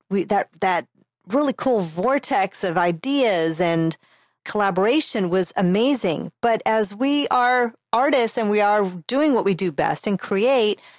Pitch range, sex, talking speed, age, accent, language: 175-230 Hz, female, 145 wpm, 40-59, American, English